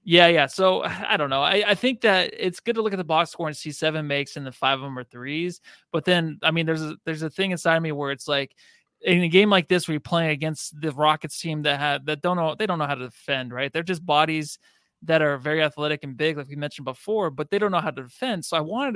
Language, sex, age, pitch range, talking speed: English, male, 20-39, 145-185 Hz, 290 wpm